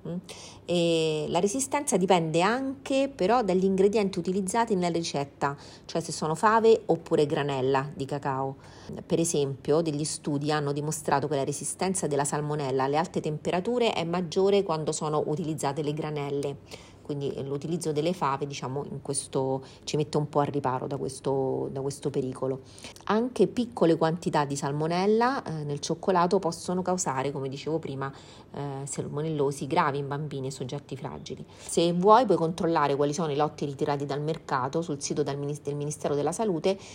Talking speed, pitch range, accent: 155 wpm, 140-175 Hz, native